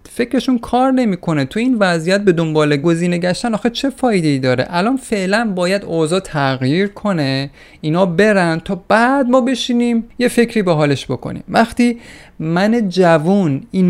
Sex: male